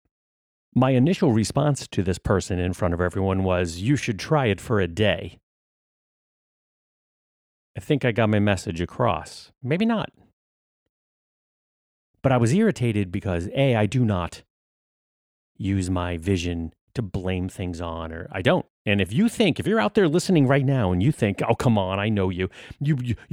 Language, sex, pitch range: English, male, 90-135 Hz